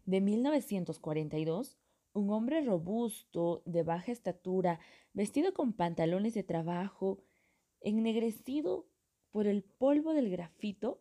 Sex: female